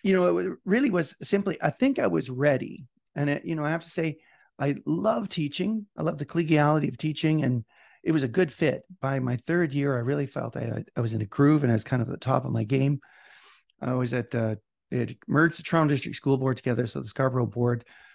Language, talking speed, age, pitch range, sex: English, 250 wpm, 40-59, 125-170 Hz, male